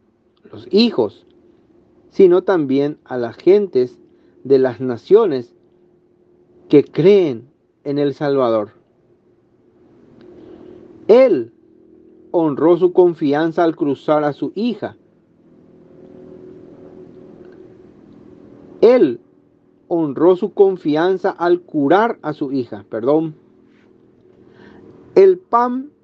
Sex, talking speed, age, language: male, 85 wpm, 40-59, Spanish